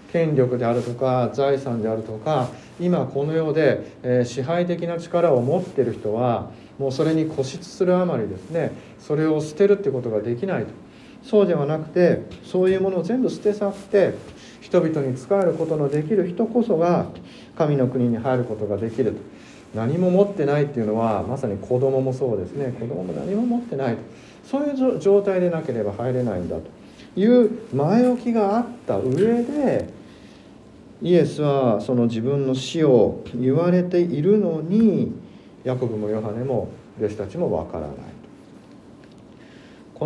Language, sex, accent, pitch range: Japanese, male, native, 120-180 Hz